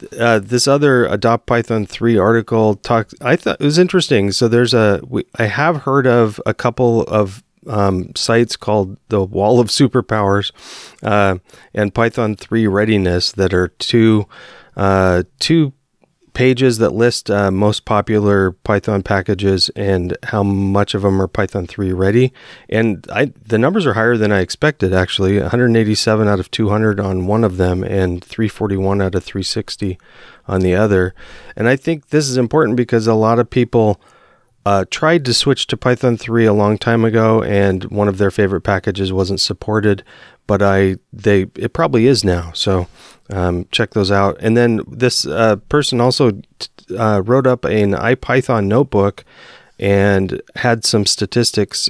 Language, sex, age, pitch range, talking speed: English, male, 30-49, 100-120 Hz, 165 wpm